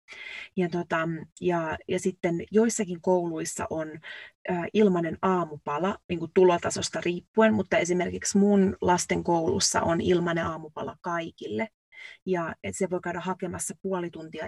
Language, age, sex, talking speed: English, 30-49, female, 130 wpm